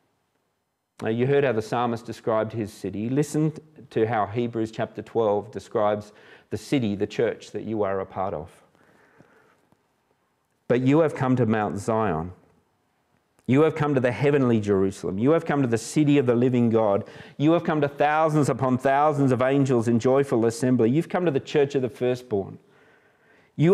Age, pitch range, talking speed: 40-59, 110-145 Hz, 180 wpm